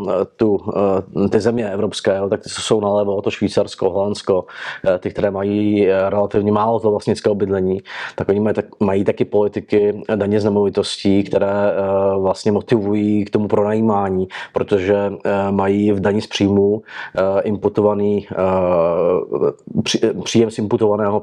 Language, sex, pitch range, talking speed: Czech, male, 100-110 Hz, 125 wpm